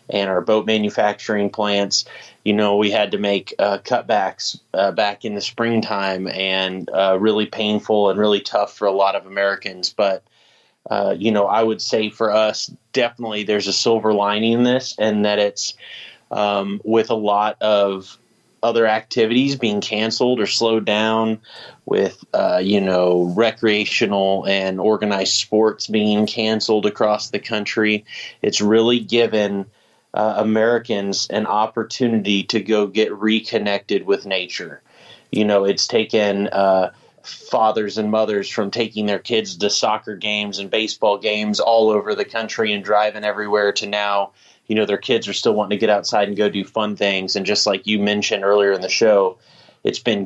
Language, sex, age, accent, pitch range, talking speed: English, male, 30-49, American, 100-110 Hz, 165 wpm